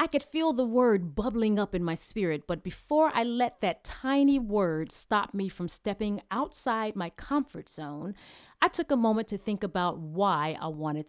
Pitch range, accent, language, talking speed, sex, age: 165-215 Hz, American, Ukrainian, 190 wpm, female, 40-59